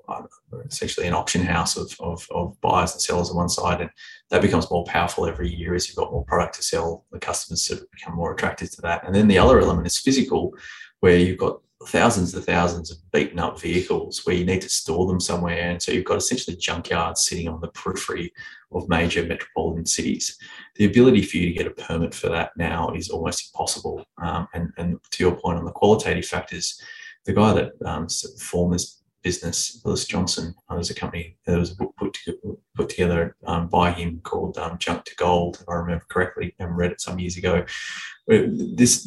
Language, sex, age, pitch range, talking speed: English, male, 20-39, 85-95 Hz, 205 wpm